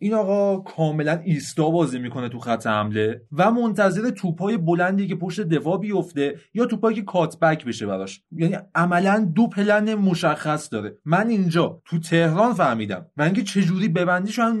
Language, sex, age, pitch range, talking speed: Persian, male, 30-49, 155-210 Hz, 165 wpm